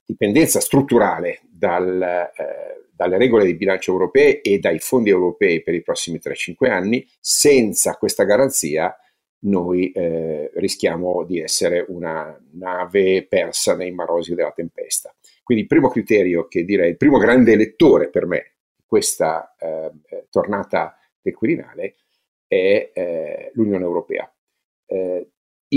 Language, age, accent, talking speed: Italian, 50-69, native, 130 wpm